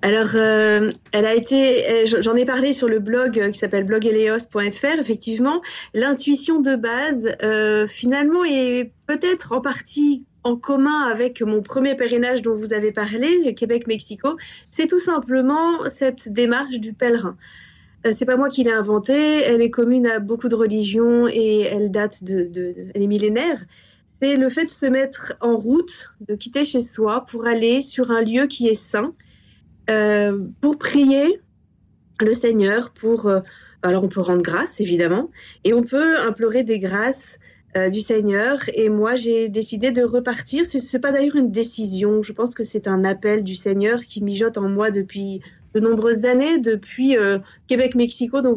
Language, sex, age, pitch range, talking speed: French, female, 30-49, 215-260 Hz, 175 wpm